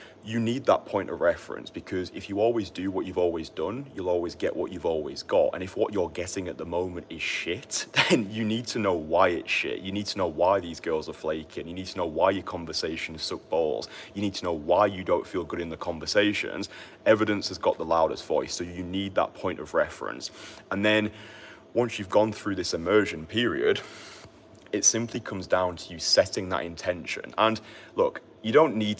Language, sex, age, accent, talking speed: English, male, 30-49, British, 220 wpm